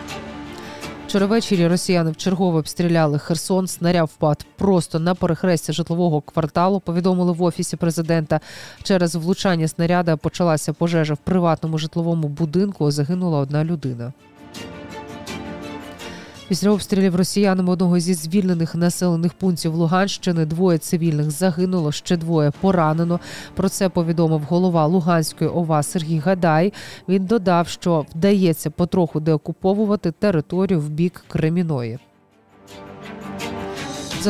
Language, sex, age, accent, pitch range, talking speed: Ukrainian, female, 20-39, native, 155-185 Hz, 110 wpm